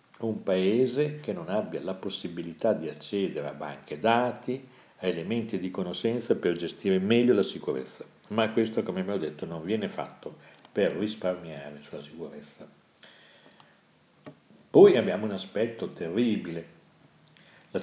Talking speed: 130 wpm